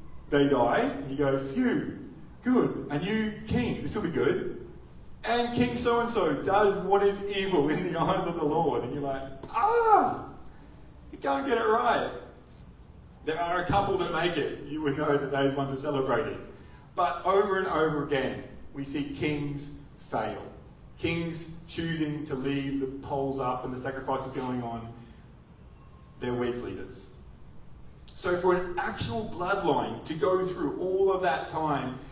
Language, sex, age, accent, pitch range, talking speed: English, male, 30-49, Australian, 125-165 Hz, 165 wpm